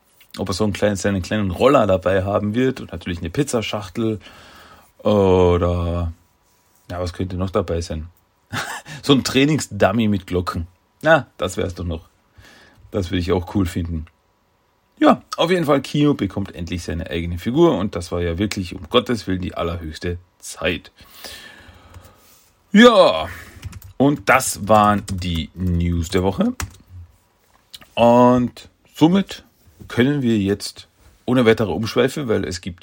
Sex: male